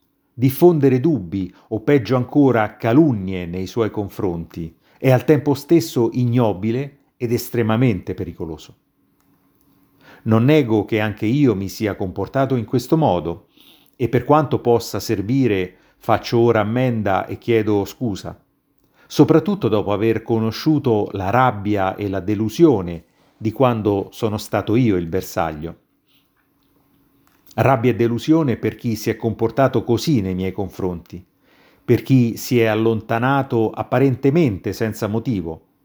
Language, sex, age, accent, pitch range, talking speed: Italian, male, 50-69, native, 100-135 Hz, 125 wpm